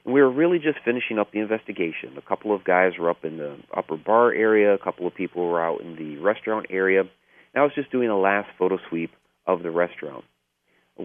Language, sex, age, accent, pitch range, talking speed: English, male, 40-59, American, 90-130 Hz, 225 wpm